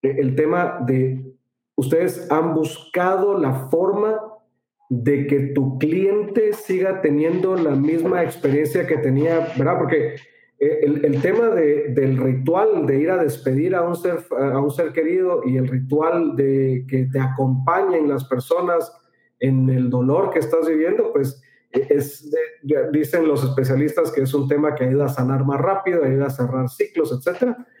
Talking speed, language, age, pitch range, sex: 160 wpm, Spanish, 40-59, 135-185 Hz, male